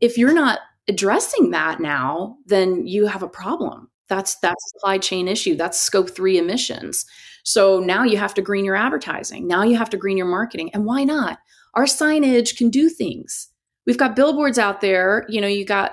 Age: 30-49